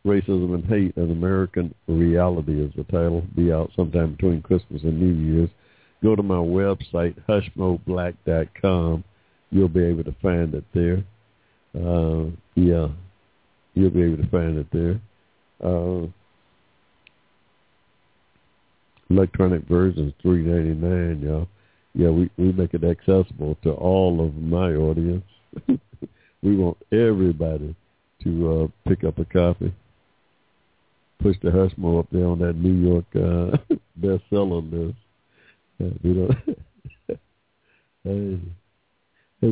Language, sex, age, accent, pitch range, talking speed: English, male, 60-79, American, 85-105 Hz, 125 wpm